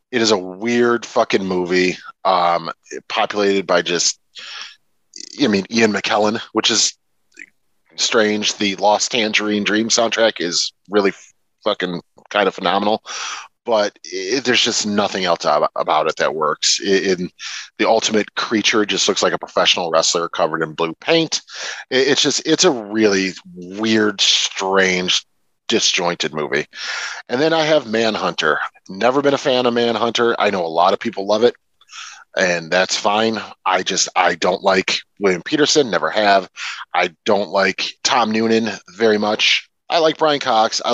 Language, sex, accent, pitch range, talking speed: English, male, American, 95-120 Hz, 150 wpm